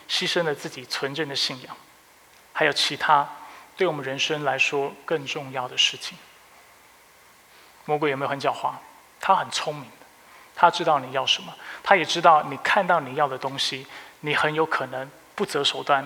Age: 20-39